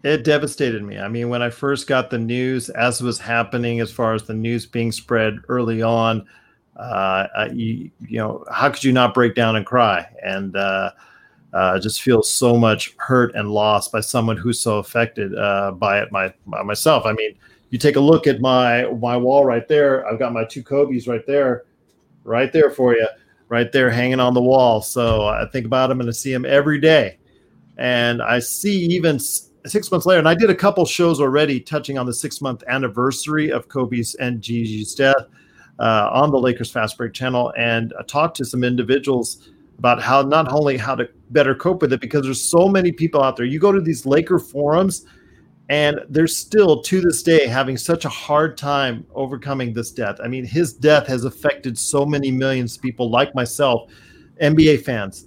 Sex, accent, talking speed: male, American, 200 wpm